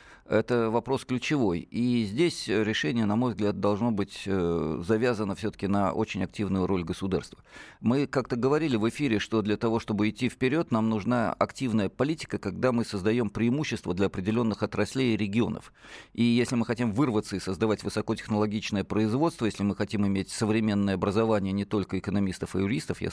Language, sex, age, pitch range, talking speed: Russian, male, 40-59, 100-120 Hz, 165 wpm